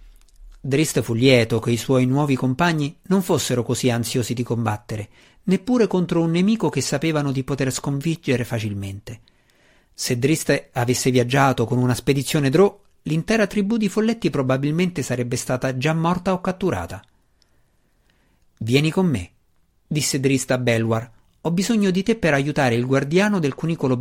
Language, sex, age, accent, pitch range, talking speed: Italian, male, 50-69, native, 115-165 Hz, 150 wpm